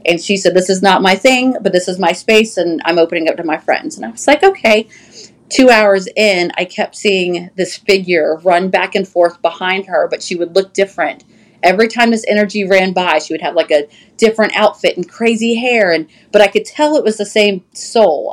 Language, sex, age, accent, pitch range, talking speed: English, female, 30-49, American, 170-205 Hz, 230 wpm